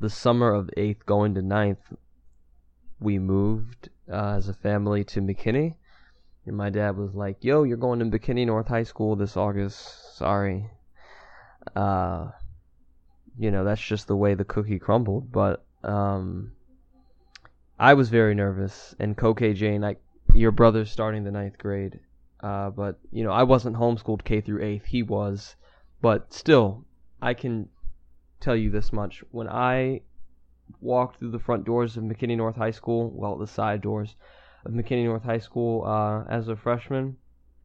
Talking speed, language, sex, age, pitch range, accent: 165 wpm, English, male, 10-29, 100-115 Hz, American